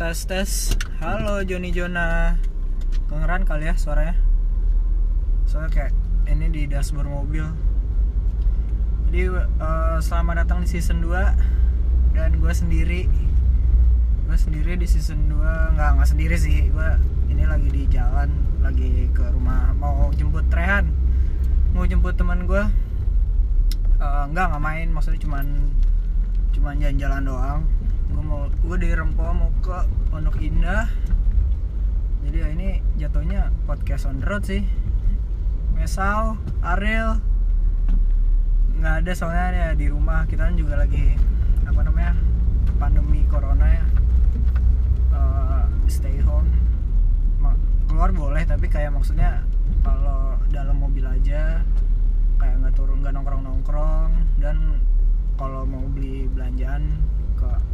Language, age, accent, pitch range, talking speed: Indonesian, 20-39, native, 70-85 Hz, 120 wpm